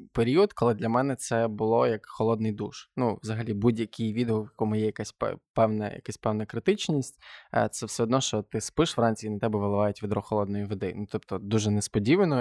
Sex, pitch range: male, 105-120 Hz